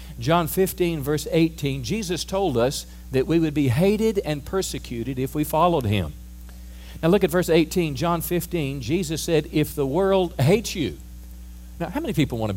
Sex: male